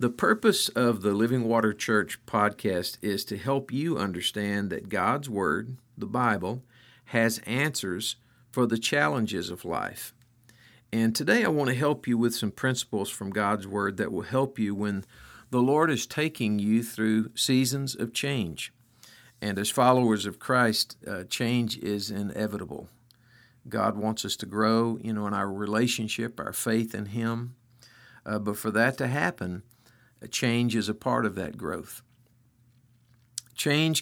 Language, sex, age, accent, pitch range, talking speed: English, male, 50-69, American, 110-125 Hz, 155 wpm